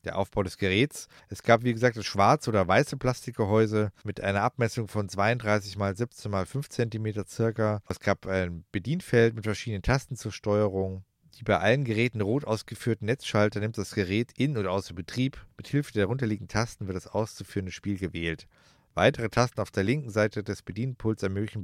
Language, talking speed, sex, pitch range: German, 185 wpm, male, 95-120 Hz